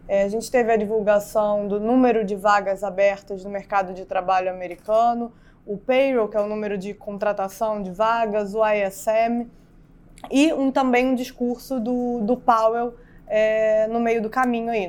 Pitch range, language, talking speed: 205-235 Hz, Portuguese, 155 wpm